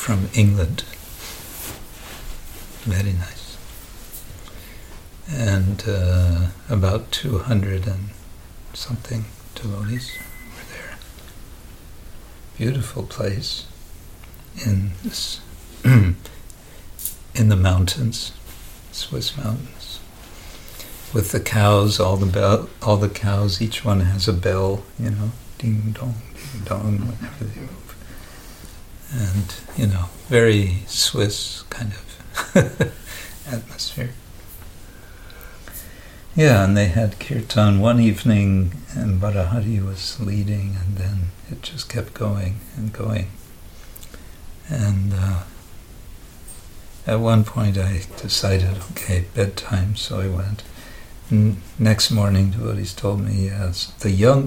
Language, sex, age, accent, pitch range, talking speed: English, male, 60-79, American, 90-110 Hz, 105 wpm